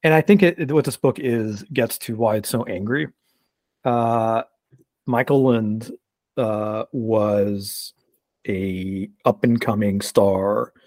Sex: male